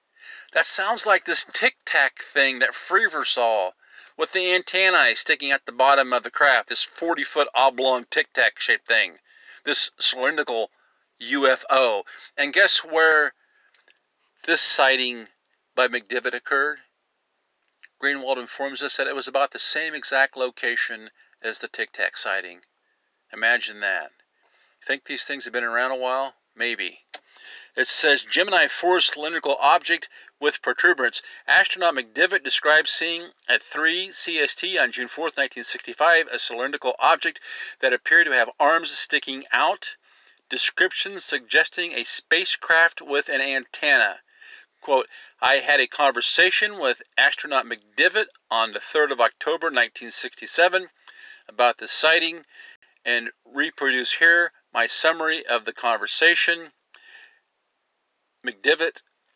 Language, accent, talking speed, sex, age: English, American, 125 wpm, male, 50-69